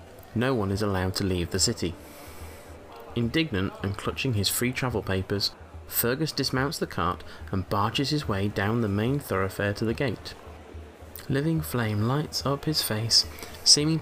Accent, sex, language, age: British, male, English, 30-49